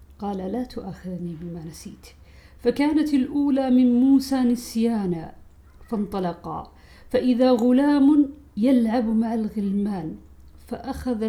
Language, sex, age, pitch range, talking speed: Arabic, female, 50-69, 195-250 Hz, 90 wpm